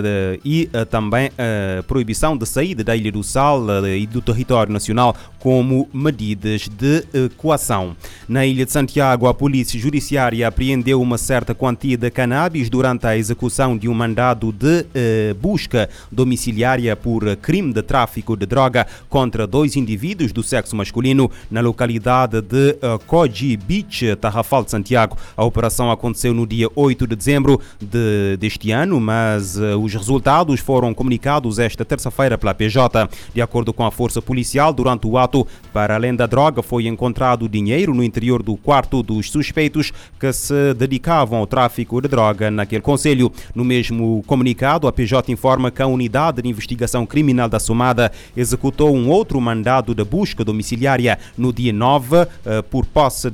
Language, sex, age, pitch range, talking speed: Portuguese, male, 30-49, 110-135 Hz, 165 wpm